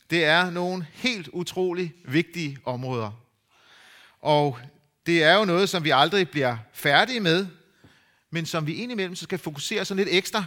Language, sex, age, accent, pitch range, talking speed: Danish, male, 30-49, native, 130-180 Hz, 155 wpm